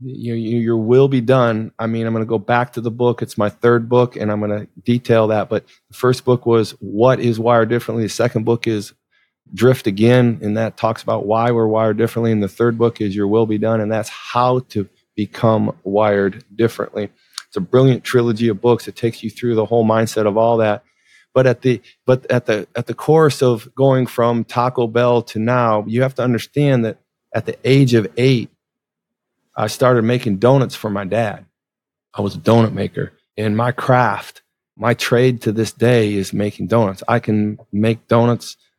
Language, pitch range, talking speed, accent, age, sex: English, 105-120 Hz, 210 wpm, American, 40-59, male